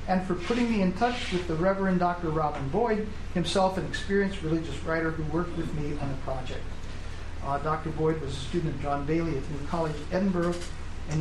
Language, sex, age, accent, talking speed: English, male, 40-59, American, 205 wpm